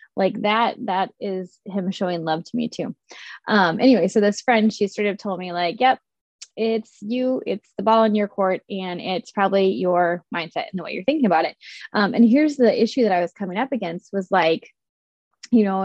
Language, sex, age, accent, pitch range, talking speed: English, female, 20-39, American, 190-250 Hz, 215 wpm